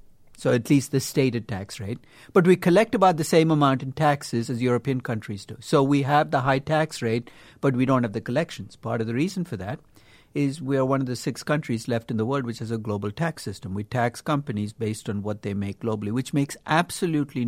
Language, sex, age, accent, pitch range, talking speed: English, male, 60-79, Indian, 115-145 Hz, 235 wpm